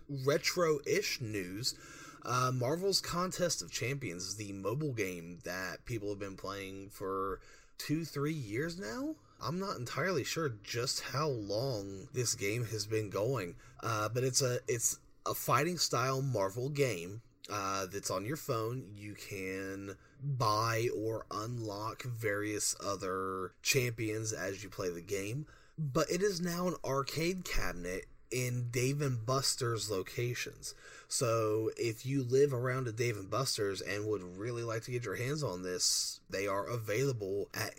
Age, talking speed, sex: 30-49, 150 wpm, male